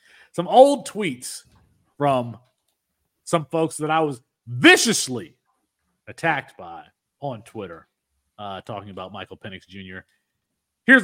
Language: English